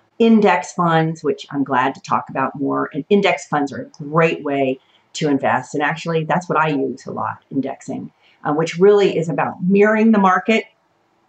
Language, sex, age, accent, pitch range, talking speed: English, female, 40-59, American, 140-185 Hz, 185 wpm